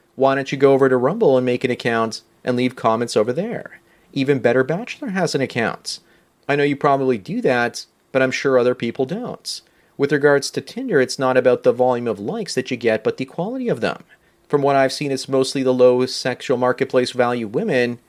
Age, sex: 30-49, male